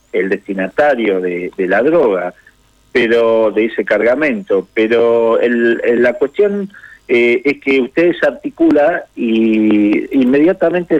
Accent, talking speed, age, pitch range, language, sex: Argentinian, 115 wpm, 50-69, 115-140 Hz, Spanish, male